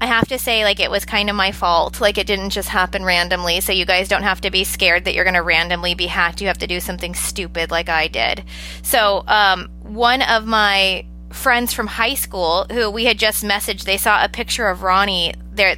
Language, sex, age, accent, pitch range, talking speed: English, female, 20-39, American, 185-245 Hz, 235 wpm